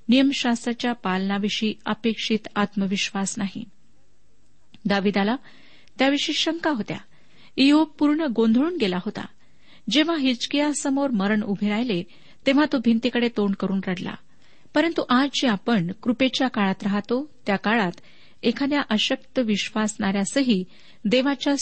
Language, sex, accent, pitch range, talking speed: Marathi, female, native, 205-265 Hz, 105 wpm